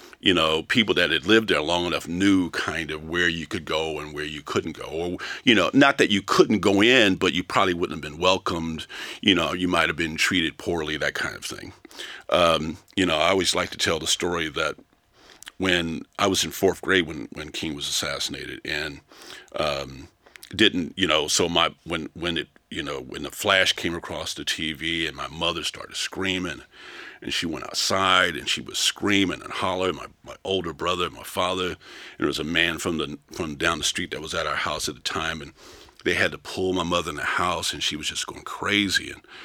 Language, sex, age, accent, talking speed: English, male, 50-69, American, 220 wpm